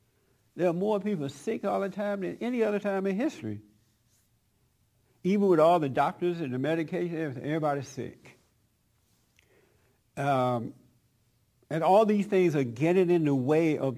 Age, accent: 60-79, American